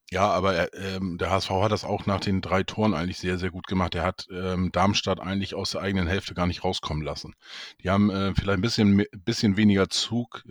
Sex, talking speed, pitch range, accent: male, 205 wpm, 90-105 Hz, German